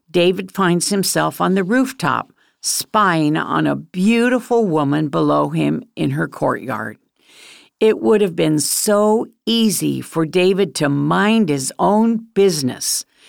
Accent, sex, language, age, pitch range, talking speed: American, female, English, 50-69, 165-225 Hz, 130 wpm